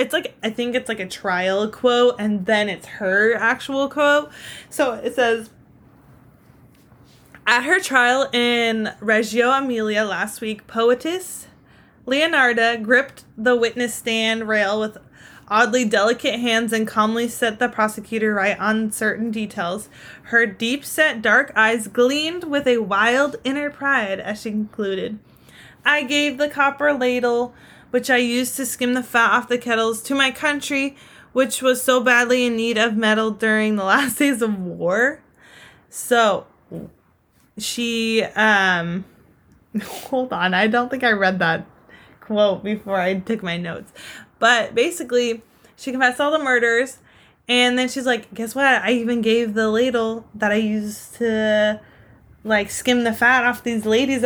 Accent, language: American, English